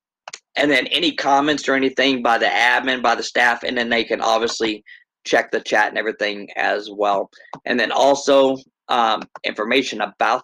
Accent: American